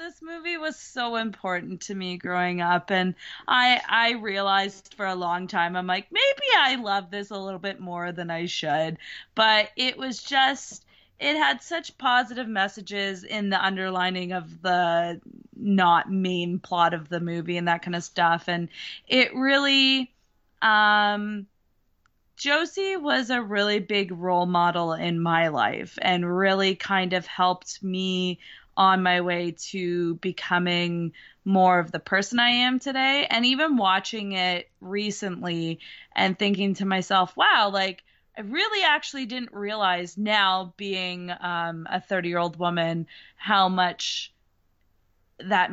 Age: 20-39